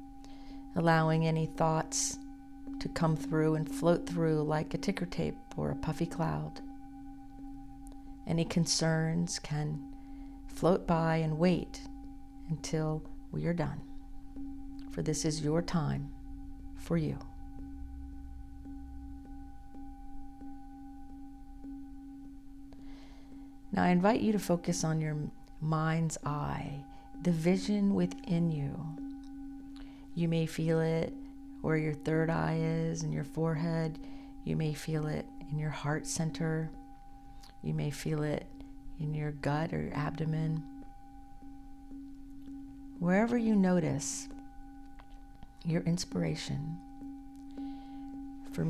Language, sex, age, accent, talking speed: English, female, 50-69, American, 105 wpm